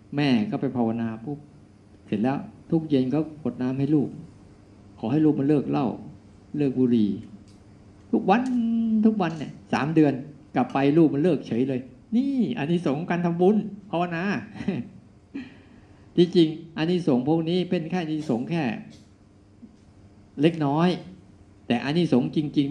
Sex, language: male, Thai